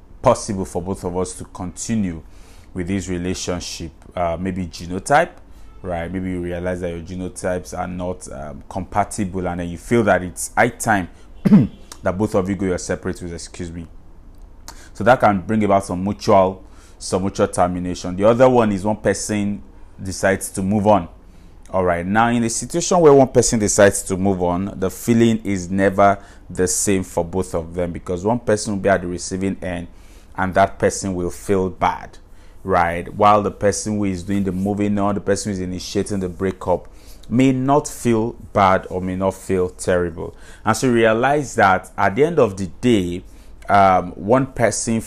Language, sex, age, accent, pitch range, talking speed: English, male, 30-49, Nigerian, 90-100 Hz, 185 wpm